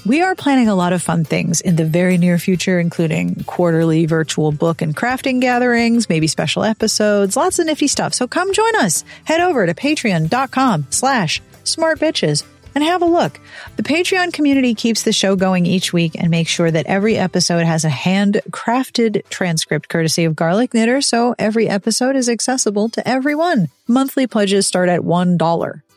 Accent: American